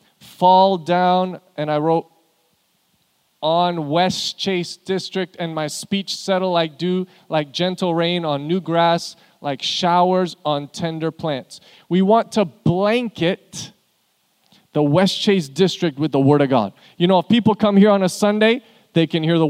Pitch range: 180-220 Hz